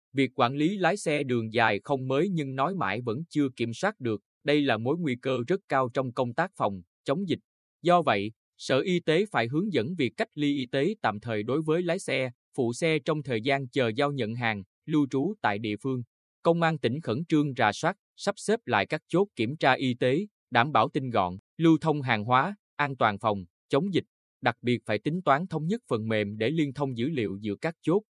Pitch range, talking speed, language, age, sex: 115-155 Hz, 235 wpm, Vietnamese, 20-39, male